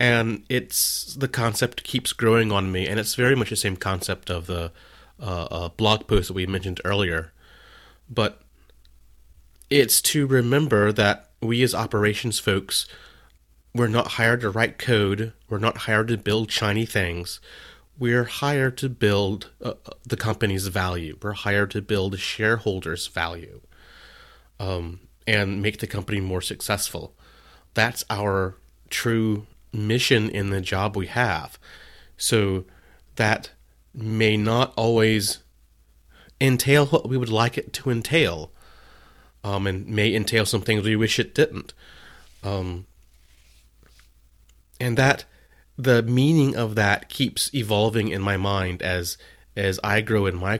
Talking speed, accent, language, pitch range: 140 wpm, American, English, 90-115 Hz